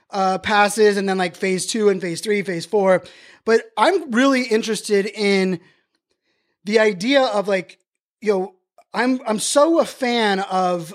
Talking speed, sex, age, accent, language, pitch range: 160 wpm, male, 20-39, American, English, 185-225 Hz